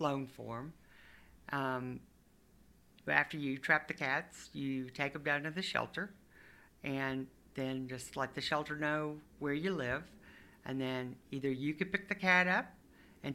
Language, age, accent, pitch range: English, 60-79, American, 125-150 Hz